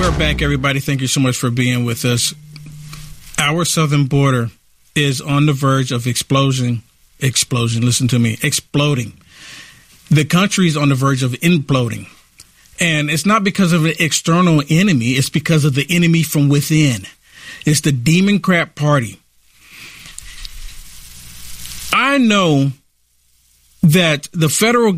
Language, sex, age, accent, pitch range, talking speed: English, male, 50-69, American, 125-190 Hz, 140 wpm